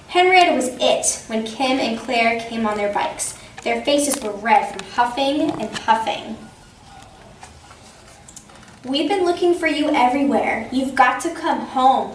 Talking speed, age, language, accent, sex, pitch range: 150 wpm, 10-29, English, American, female, 215-290 Hz